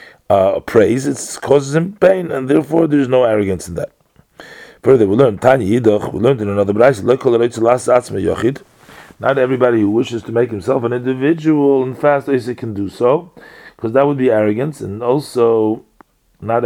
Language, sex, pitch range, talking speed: English, male, 105-130 Hz, 160 wpm